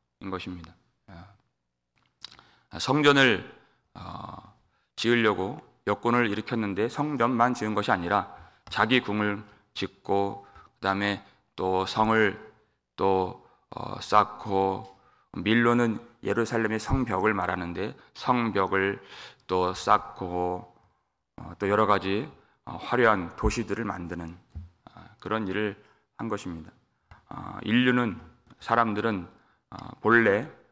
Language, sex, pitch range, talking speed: English, male, 100-130 Hz, 70 wpm